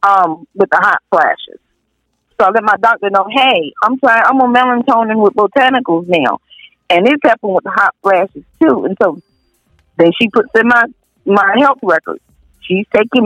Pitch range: 180-235 Hz